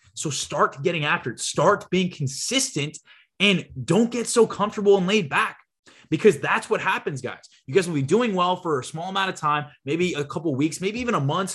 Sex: male